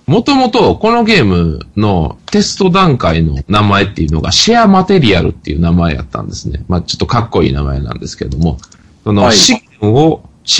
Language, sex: Japanese, male